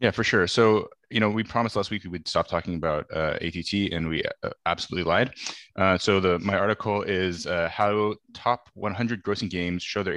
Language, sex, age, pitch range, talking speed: English, male, 20-39, 85-105 Hz, 205 wpm